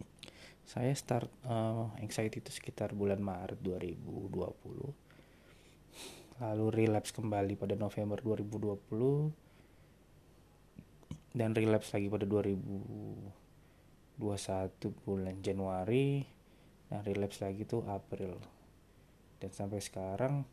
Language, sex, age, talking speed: Indonesian, male, 20-39, 90 wpm